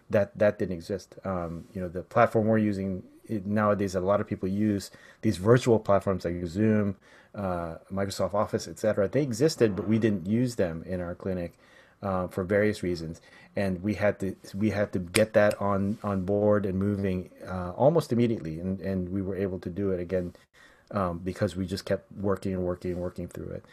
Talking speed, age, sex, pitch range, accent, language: 195 wpm, 30-49, male, 95-110 Hz, American, English